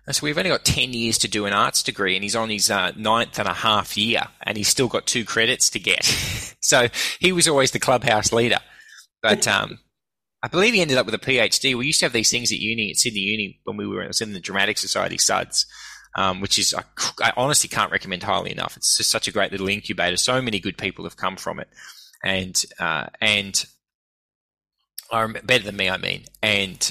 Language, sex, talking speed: English, male, 225 wpm